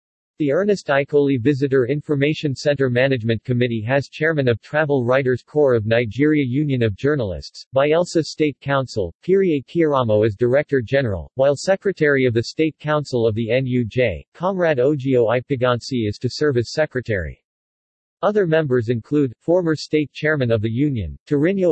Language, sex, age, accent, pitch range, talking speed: English, male, 50-69, American, 120-150 Hz, 150 wpm